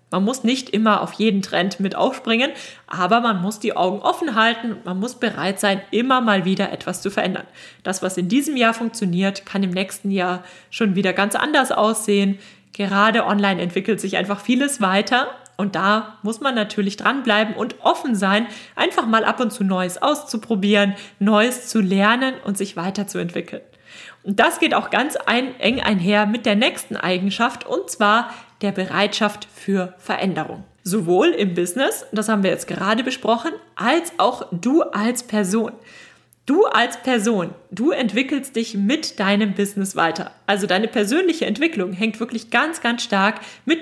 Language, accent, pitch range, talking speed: German, German, 195-235 Hz, 165 wpm